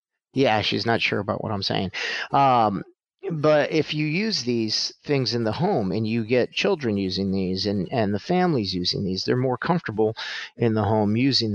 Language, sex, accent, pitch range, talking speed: English, male, American, 105-145 Hz, 190 wpm